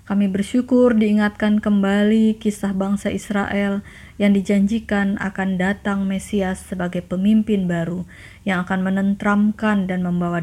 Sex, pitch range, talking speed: female, 190-220 Hz, 115 wpm